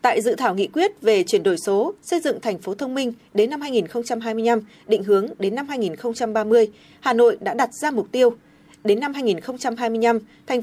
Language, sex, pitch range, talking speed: Vietnamese, female, 215-340 Hz, 190 wpm